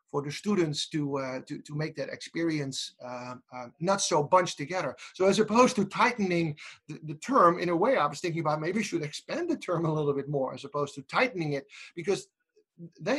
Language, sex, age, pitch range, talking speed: English, male, 30-49, 140-180 Hz, 220 wpm